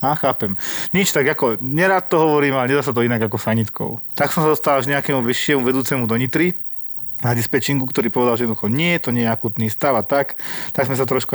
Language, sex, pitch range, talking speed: Slovak, male, 115-130 Hz, 225 wpm